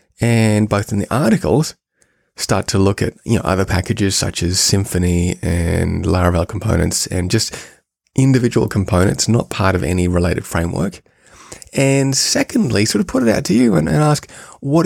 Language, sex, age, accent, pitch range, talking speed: English, male, 20-39, Australian, 100-135 Hz, 170 wpm